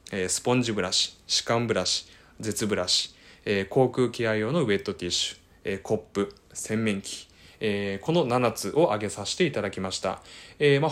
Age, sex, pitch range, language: 20-39, male, 95-125 Hz, Japanese